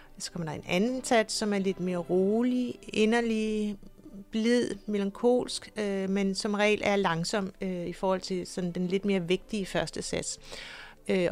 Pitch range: 180-225 Hz